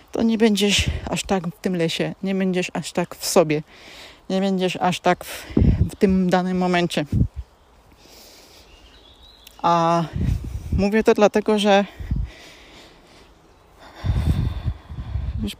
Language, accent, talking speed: Polish, native, 110 wpm